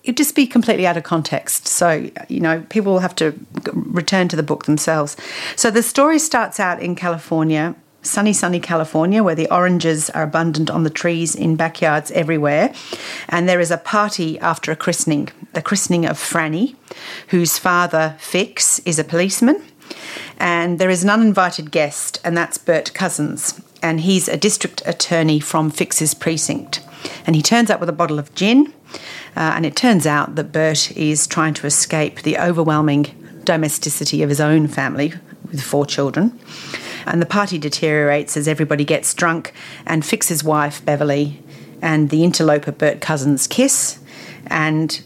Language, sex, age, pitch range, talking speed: English, female, 40-59, 155-180 Hz, 165 wpm